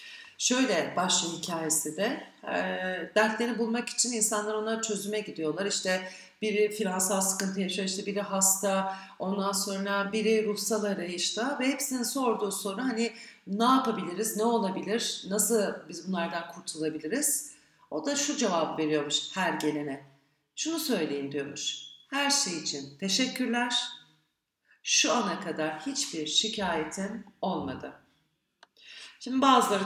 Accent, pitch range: native, 180-230 Hz